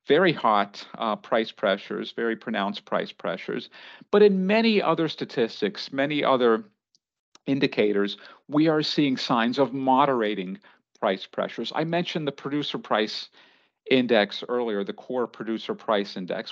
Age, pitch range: 50-69, 115-160 Hz